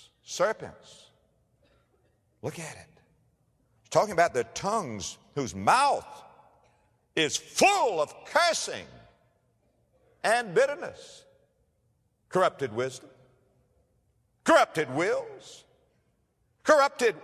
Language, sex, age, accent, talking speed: English, male, 50-69, American, 75 wpm